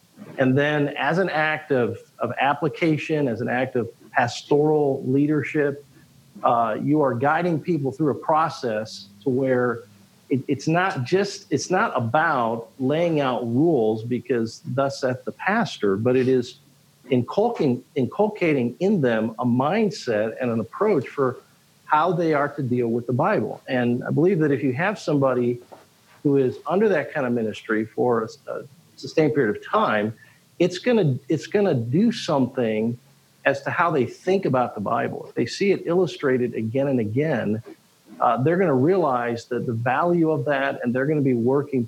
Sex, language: male, English